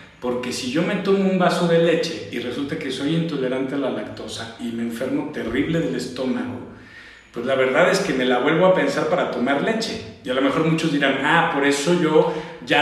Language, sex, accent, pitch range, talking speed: Spanish, male, Mexican, 130-185 Hz, 220 wpm